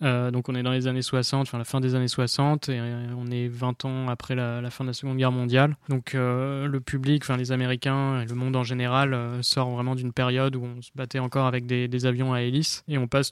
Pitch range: 125-135 Hz